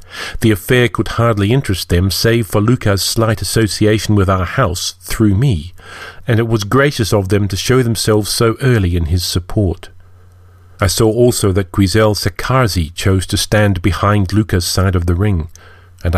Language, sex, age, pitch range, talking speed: English, male, 40-59, 90-110 Hz, 170 wpm